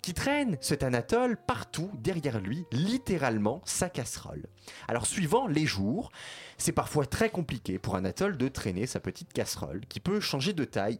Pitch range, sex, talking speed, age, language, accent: 105-180 Hz, male, 165 wpm, 30-49, French, French